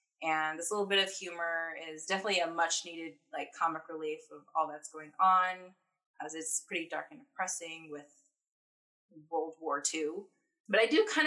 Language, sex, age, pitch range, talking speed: English, female, 20-39, 165-210 Hz, 175 wpm